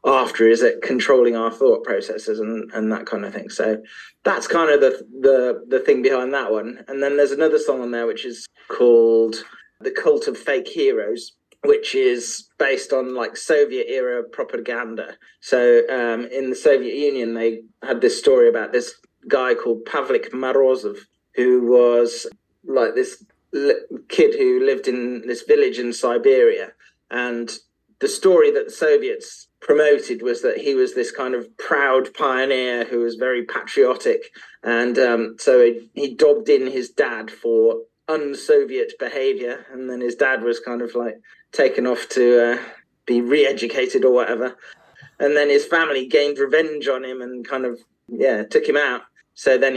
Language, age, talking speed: English, 30-49, 170 wpm